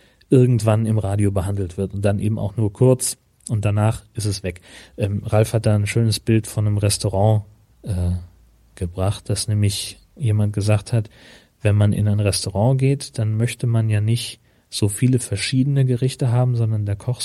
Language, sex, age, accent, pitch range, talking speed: German, male, 30-49, German, 105-125 Hz, 180 wpm